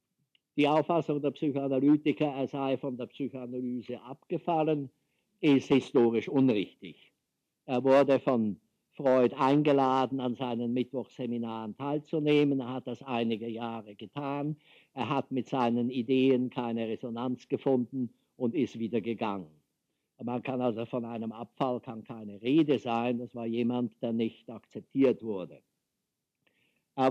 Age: 50-69